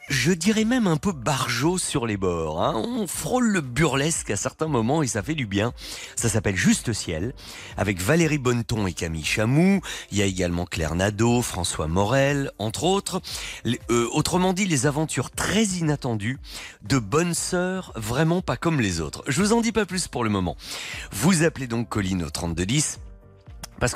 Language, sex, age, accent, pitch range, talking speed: French, male, 40-59, French, 95-155 Hz, 185 wpm